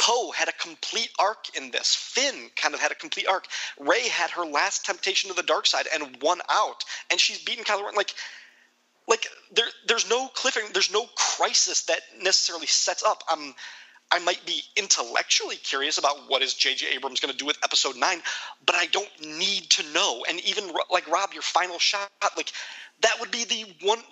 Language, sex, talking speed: English, male, 195 wpm